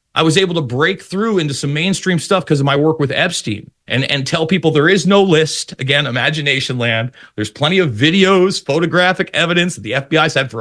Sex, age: male, 40-59